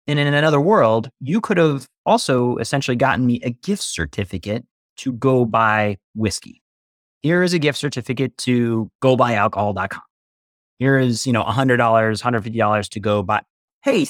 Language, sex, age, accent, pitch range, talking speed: English, male, 30-49, American, 110-160 Hz, 160 wpm